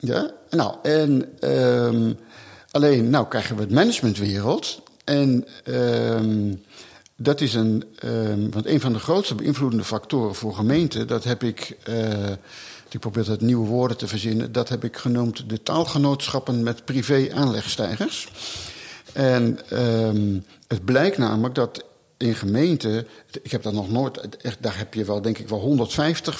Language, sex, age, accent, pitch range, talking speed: Dutch, male, 50-69, Dutch, 110-145 Hz, 155 wpm